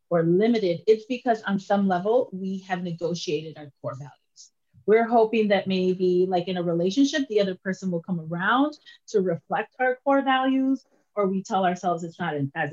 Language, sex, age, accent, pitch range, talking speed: English, female, 30-49, American, 175-235 Hz, 185 wpm